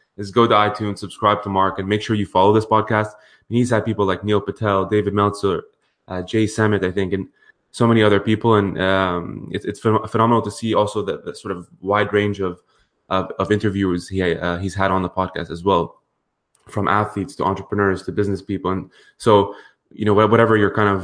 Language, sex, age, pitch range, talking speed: English, male, 20-39, 95-105 Hz, 215 wpm